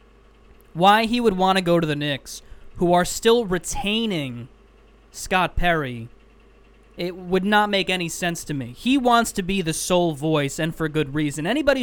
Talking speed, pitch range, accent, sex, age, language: 180 wpm, 160-190 Hz, American, male, 20-39, English